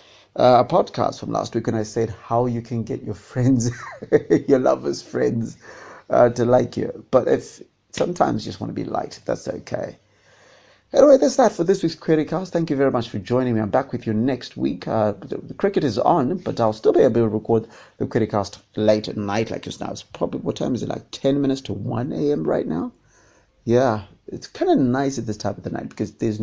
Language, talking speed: English, 230 wpm